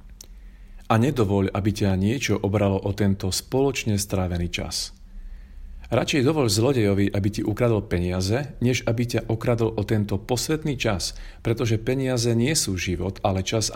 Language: Slovak